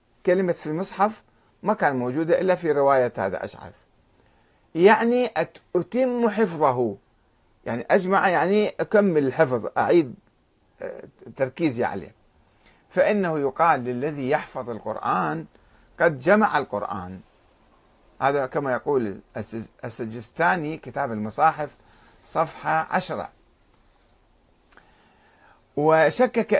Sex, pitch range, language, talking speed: male, 115-185 Hz, Arabic, 90 wpm